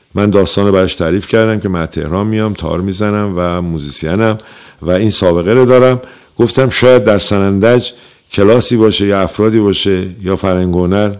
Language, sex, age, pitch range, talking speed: Persian, male, 50-69, 90-110 Hz, 155 wpm